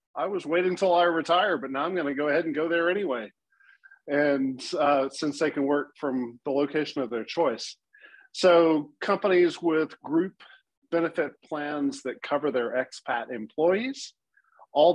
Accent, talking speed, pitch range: American, 160 wpm, 130-160 Hz